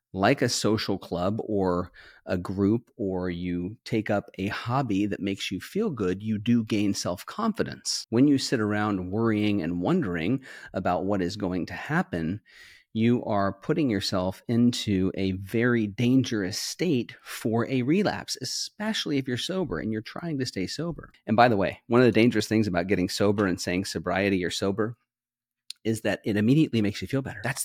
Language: English